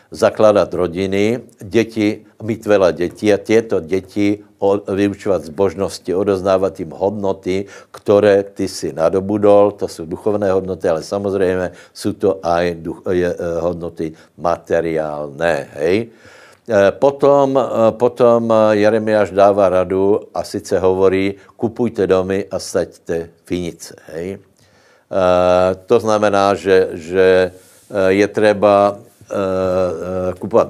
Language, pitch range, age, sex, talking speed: Slovak, 95-105 Hz, 60-79, male, 105 wpm